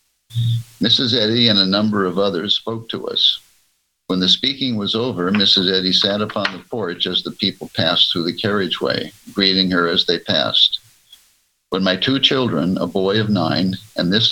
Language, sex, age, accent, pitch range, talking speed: English, male, 60-79, American, 95-115 Hz, 180 wpm